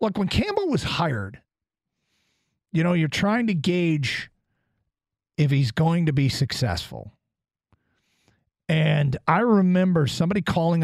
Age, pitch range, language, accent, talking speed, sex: 40-59, 125-165 Hz, English, American, 120 wpm, male